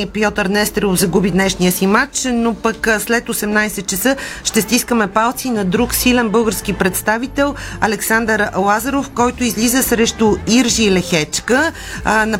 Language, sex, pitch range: Bulgarian, female, 195-240 Hz